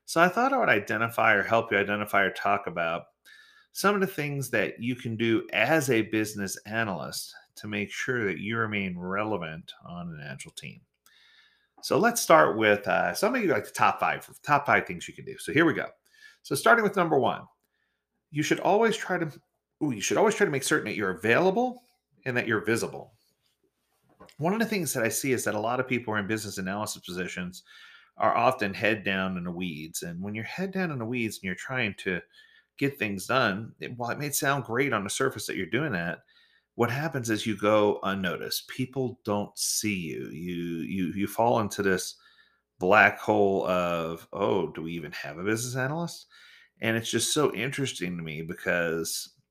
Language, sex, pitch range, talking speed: English, male, 100-170 Hz, 205 wpm